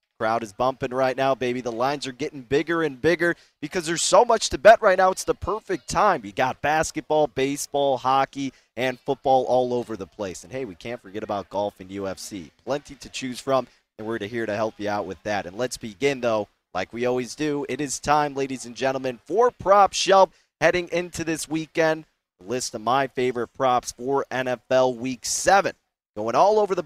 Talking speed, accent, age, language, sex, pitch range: 210 wpm, American, 30-49, English, male, 115-150 Hz